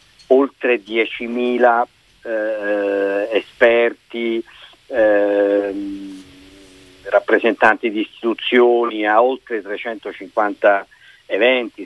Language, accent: Italian, native